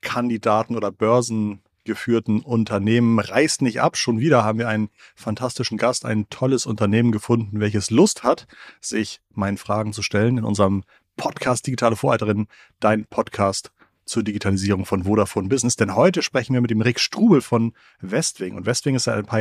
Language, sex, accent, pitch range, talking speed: German, male, German, 105-120 Hz, 165 wpm